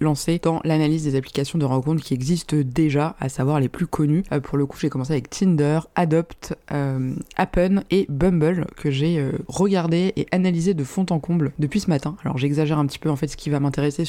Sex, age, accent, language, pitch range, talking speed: female, 20-39, French, French, 145-170 Hz, 215 wpm